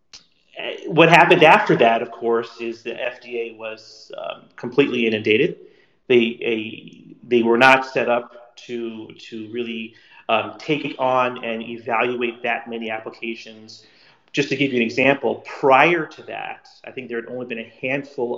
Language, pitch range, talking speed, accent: English, 110-130 Hz, 160 wpm, American